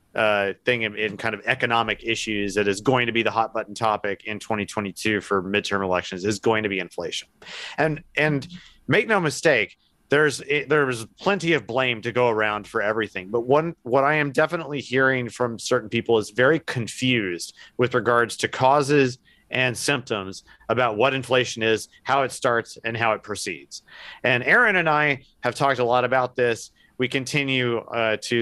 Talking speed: 185 wpm